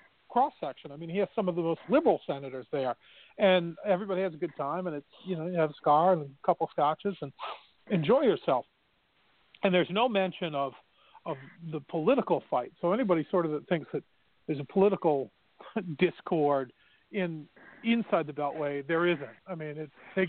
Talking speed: 190 wpm